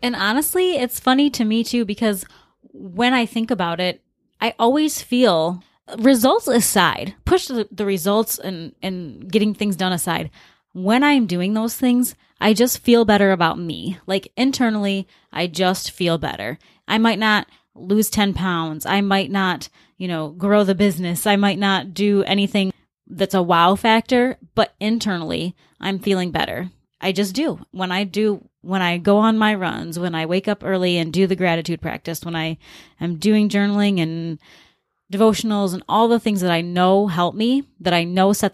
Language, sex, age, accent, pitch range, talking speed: English, female, 20-39, American, 175-215 Hz, 180 wpm